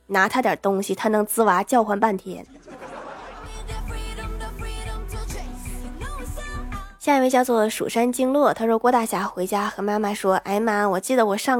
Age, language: 20-39, Chinese